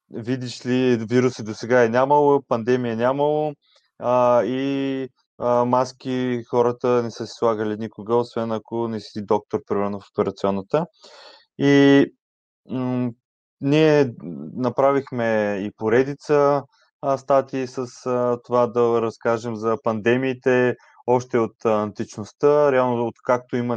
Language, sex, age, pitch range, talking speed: Bulgarian, male, 20-39, 115-130 Hz, 110 wpm